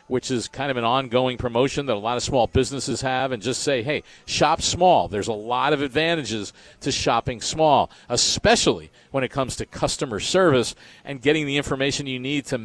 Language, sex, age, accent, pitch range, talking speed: English, male, 50-69, American, 130-155 Hz, 200 wpm